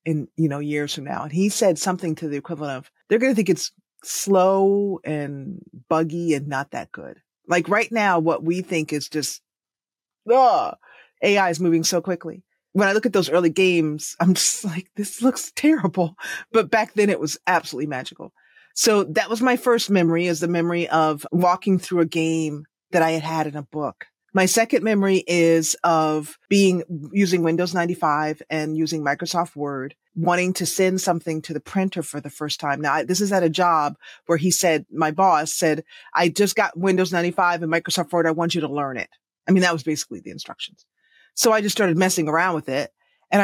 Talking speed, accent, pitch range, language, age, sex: 205 wpm, American, 160-205 Hz, English, 30-49, female